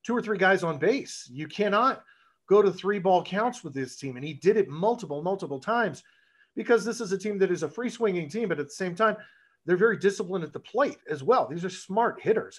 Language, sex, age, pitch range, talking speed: English, male, 40-59, 135-190 Hz, 245 wpm